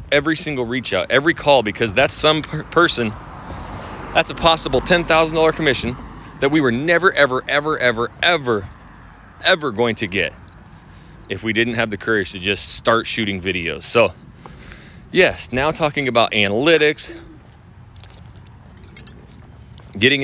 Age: 30-49